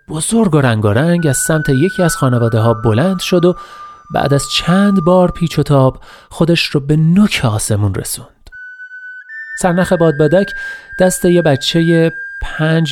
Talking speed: 155 wpm